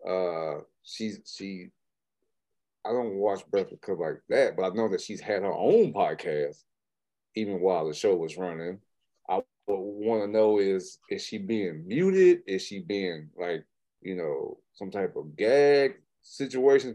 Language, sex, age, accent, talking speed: English, male, 30-49, American, 160 wpm